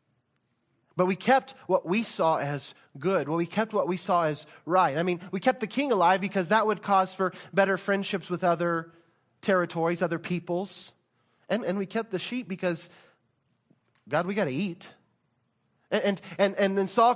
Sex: male